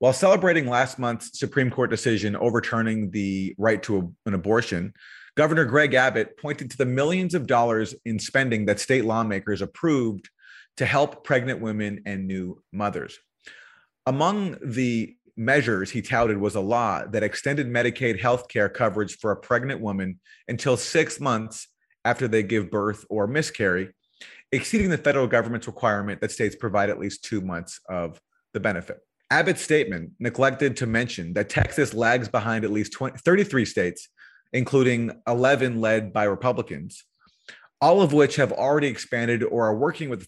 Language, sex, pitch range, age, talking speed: English, male, 105-135 Hz, 30-49, 160 wpm